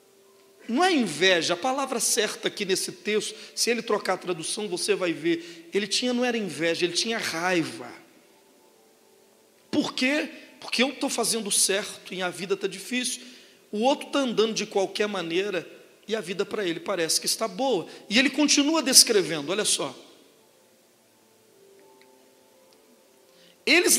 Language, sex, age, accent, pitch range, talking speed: Portuguese, male, 40-59, Brazilian, 195-275 Hz, 150 wpm